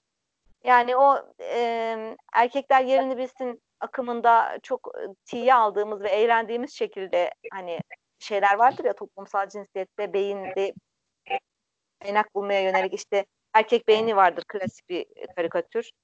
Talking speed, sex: 120 wpm, female